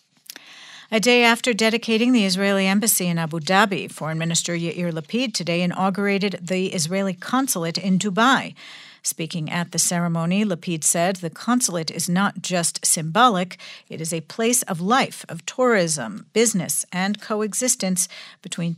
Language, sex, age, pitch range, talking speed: English, female, 50-69, 175-220 Hz, 145 wpm